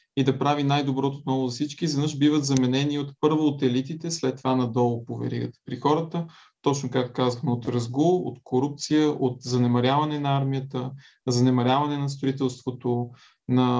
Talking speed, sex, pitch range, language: 150 wpm, male, 125-150 Hz, Bulgarian